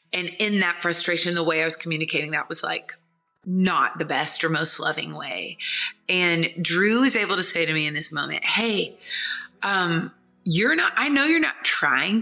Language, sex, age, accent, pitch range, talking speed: English, female, 20-39, American, 170-240 Hz, 190 wpm